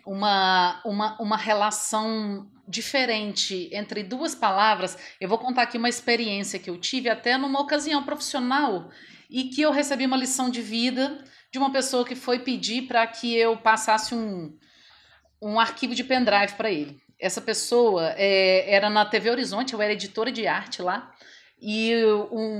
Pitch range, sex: 205-240 Hz, female